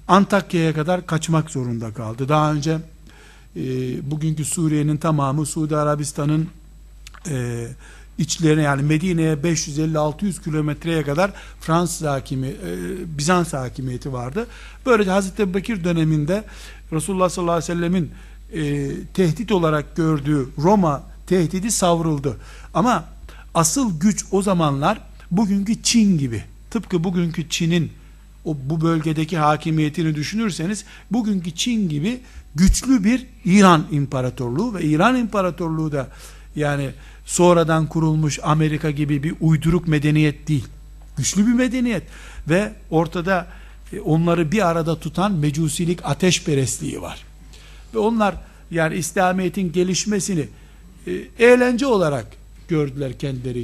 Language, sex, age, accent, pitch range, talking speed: Turkish, male, 60-79, native, 150-190 Hz, 115 wpm